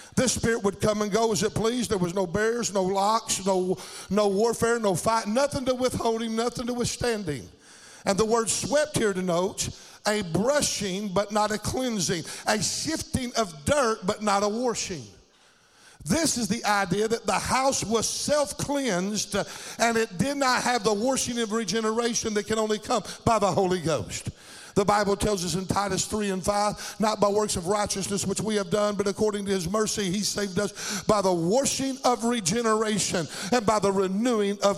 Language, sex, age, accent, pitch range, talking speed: English, male, 50-69, American, 195-225 Hz, 185 wpm